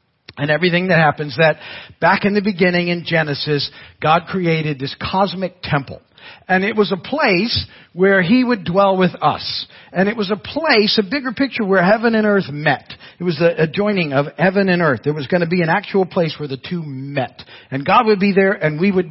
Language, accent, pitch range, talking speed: English, American, 150-205 Hz, 215 wpm